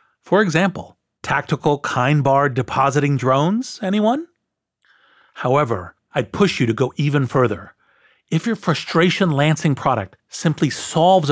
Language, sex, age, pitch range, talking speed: English, male, 40-59, 115-155 Hz, 110 wpm